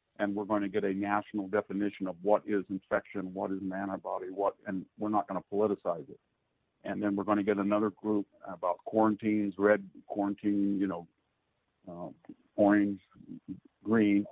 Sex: male